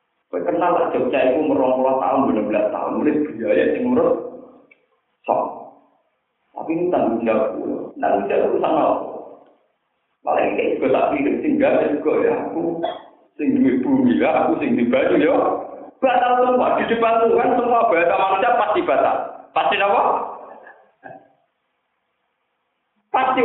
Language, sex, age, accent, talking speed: Indonesian, male, 50-69, native, 125 wpm